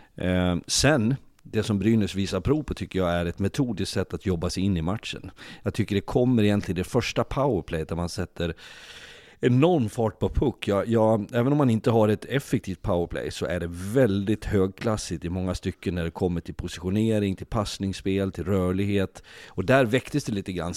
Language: Swedish